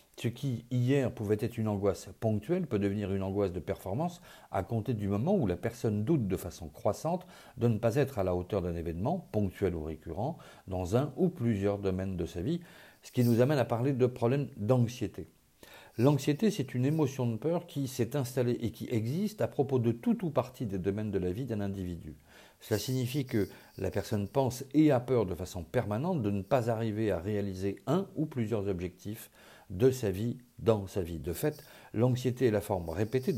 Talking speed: 205 wpm